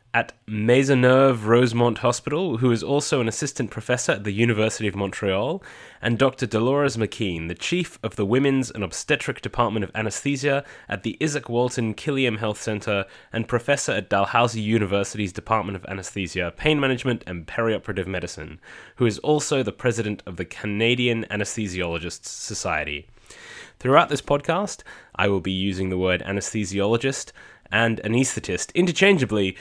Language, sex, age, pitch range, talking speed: English, male, 20-39, 100-140 Hz, 145 wpm